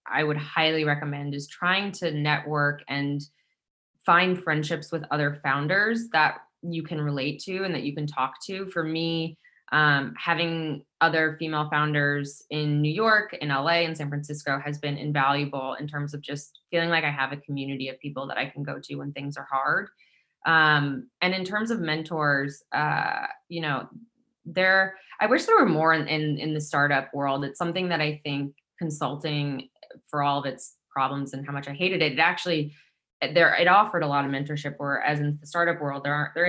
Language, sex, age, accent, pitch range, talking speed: English, female, 20-39, American, 140-160 Hz, 195 wpm